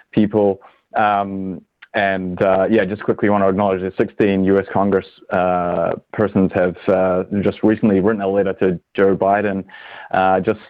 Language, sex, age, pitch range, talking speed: English, male, 20-39, 95-105 Hz, 155 wpm